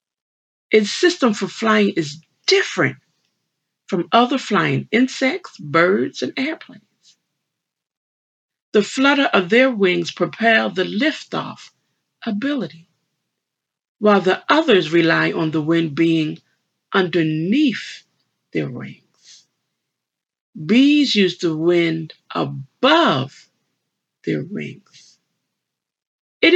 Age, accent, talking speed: 50-69, American, 95 wpm